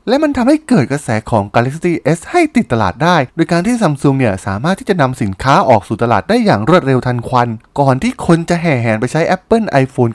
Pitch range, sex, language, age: 115-180 Hz, male, Thai, 20-39